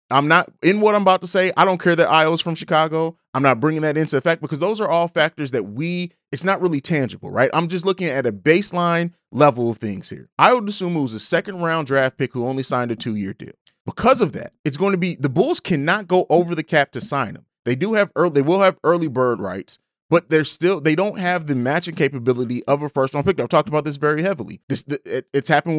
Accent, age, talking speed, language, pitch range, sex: American, 30-49, 255 wpm, English, 140-190 Hz, male